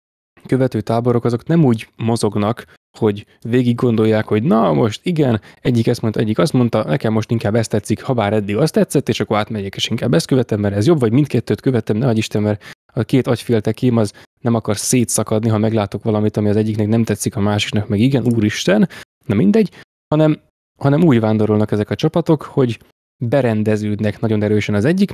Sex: male